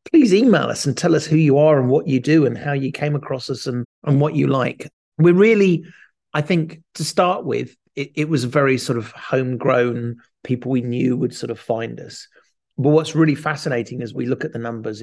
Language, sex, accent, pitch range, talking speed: English, male, British, 125-160 Hz, 225 wpm